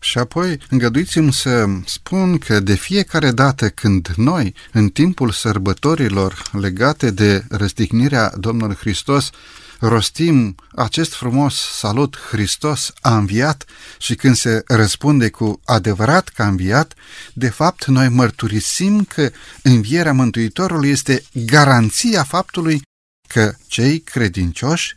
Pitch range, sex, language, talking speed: 115-155 Hz, male, Romanian, 115 wpm